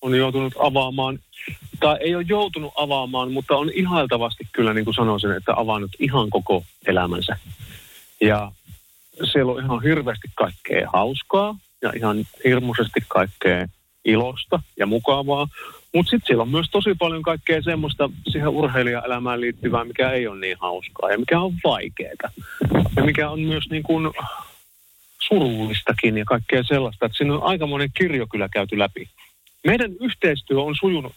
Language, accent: Finnish, native